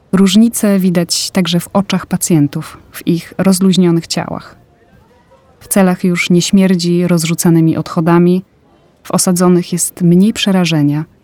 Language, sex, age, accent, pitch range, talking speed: Polish, female, 30-49, native, 160-190 Hz, 115 wpm